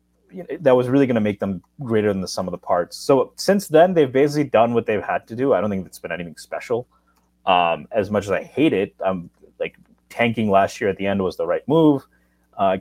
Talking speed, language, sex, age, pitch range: 250 wpm, English, male, 30-49, 95-135 Hz